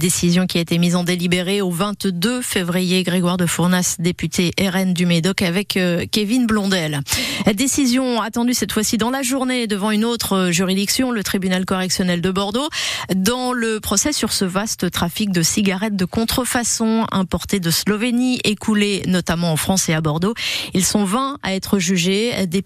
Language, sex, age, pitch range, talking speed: French, female, 30-49, 180-225 Hz, 170 wpm